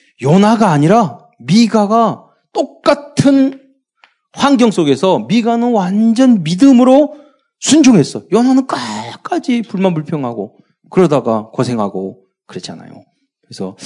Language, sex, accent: Korean, male, native